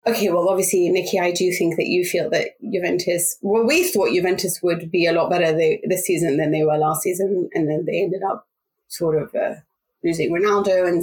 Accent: British